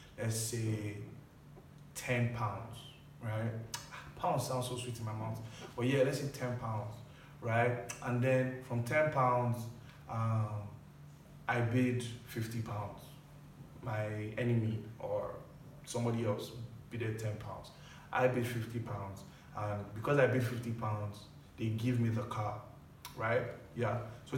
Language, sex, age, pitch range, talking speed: English, male, 20-39, 110-130 Hz, 135 wpm